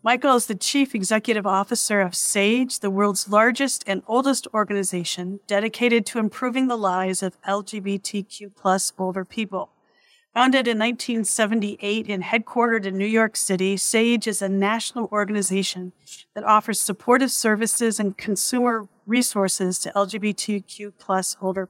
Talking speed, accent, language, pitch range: 130 wpm, American, English, 195-230 Hz